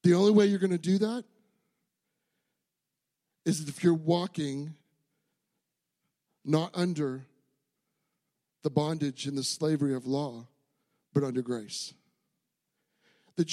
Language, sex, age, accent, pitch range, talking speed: English, male, 50-69, American, 150-190 Hz, 110 wpm